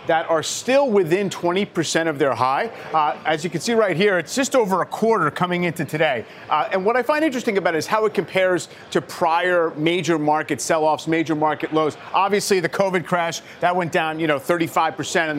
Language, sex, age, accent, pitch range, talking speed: English, male, 40-59, American, 160-195 Hz, 210 wpm